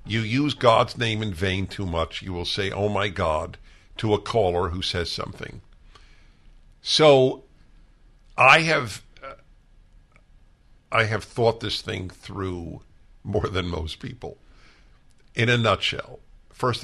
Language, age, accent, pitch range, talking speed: English, 60-79, American, 85-110 Hz, 135 wpm